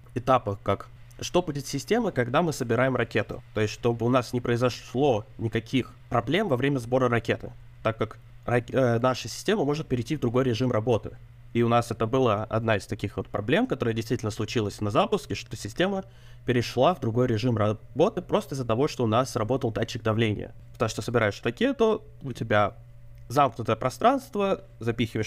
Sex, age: male, 20-39